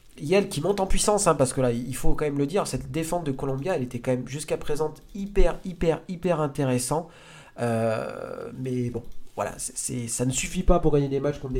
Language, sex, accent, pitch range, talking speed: French, male, French, 115-145 Hz, 230 wpm